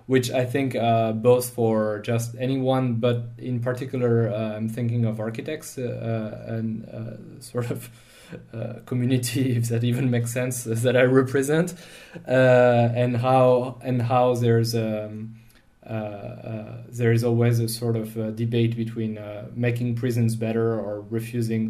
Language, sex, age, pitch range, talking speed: English, male, 20-39, 115-125 Hz, 150 wpm